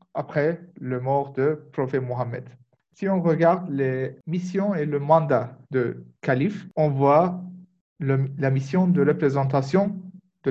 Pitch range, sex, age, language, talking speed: 135-180 Hz, male, 50-69, Turkish, 135 wpm